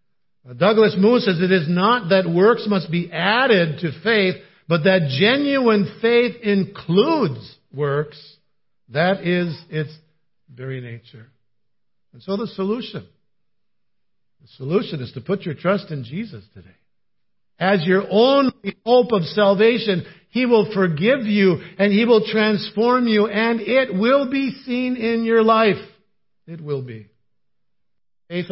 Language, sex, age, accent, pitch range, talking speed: English, male, 50-69, American, 140-205 Hz, 135 wpm